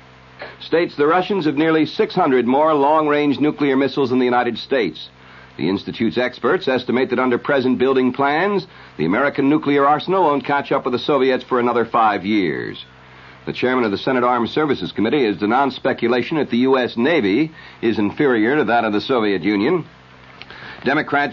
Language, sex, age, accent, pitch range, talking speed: English, male, 60-79, American, 115-145 Hz, 175 wpm